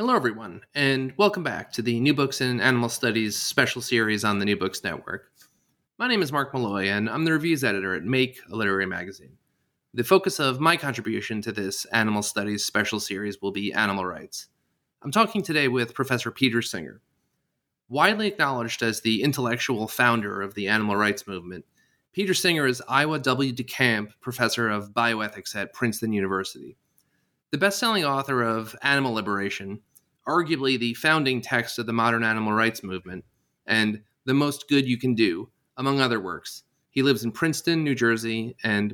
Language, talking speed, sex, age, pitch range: English, 175 wpm, male, 30-49, 105-140 Hz